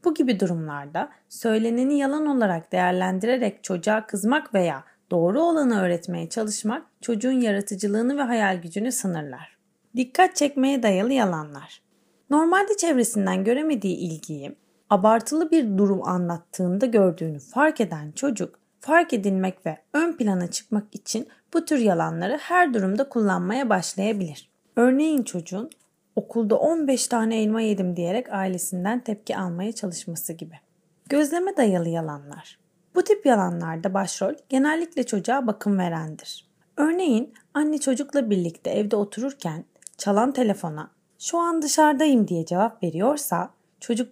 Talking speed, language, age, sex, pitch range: 120 wpm, Turkish, 30-49, female, 180-265 Hz